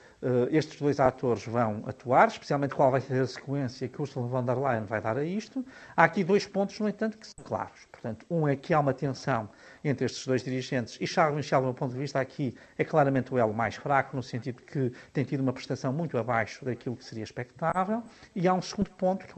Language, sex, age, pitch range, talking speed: Portuguese, male, 50-69, 130-165 Hz, 230 wpm